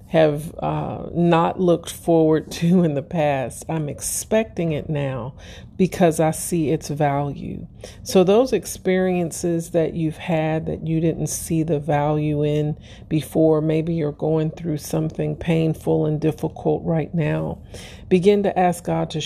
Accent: American